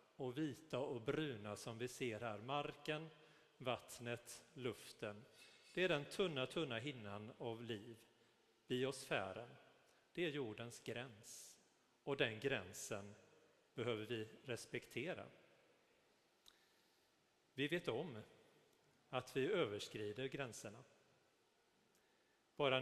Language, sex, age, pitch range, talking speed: Swedish, male, 40-59, 115-150 Hz, 95 wpm